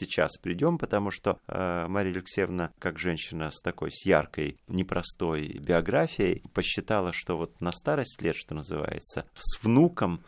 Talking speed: 145 wpm